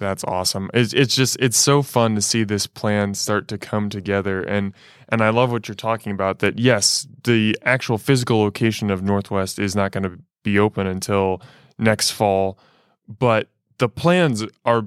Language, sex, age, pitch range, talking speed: English, male, 20-39, 105-125 Hz, 195 wpm